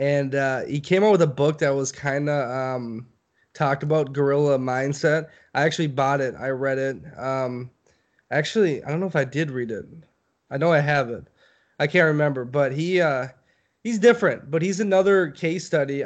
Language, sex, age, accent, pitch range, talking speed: English, male, 20-39, American, 140-160 Hz, 195 wpm